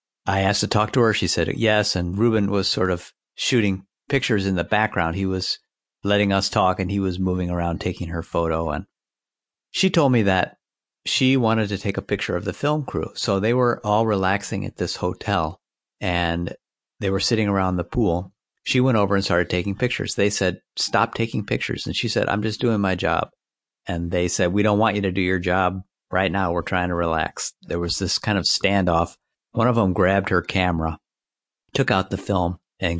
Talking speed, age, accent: 210 wpm, 50-69, American